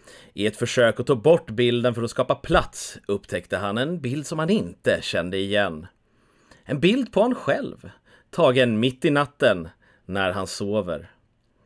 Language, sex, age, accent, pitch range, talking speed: English, male, 30-49, Swedish, 100-150 Hz, 165 wpm